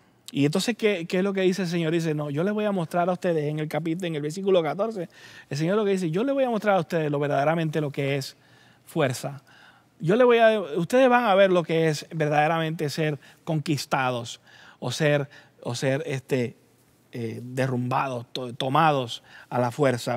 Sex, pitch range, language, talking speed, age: male, 145-210 Hz, English, 210 wpm, 30-49